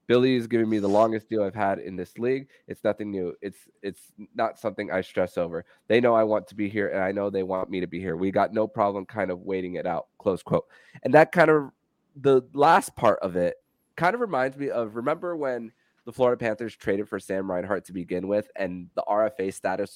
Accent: American